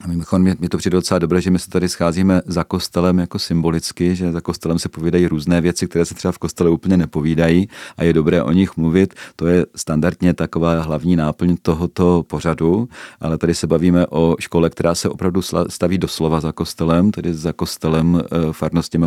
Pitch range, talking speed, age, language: 80-90 Hz, 185 wpm, 40-59, Czech